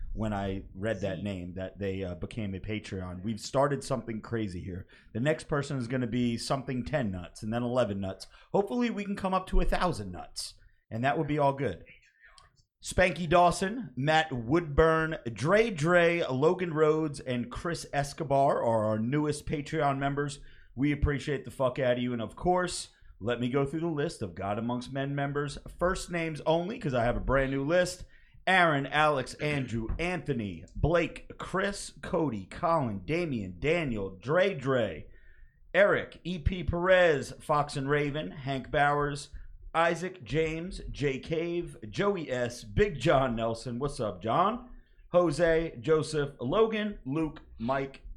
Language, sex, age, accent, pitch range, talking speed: English, male, 30-49, American, 115-160 Hz, 160 wpm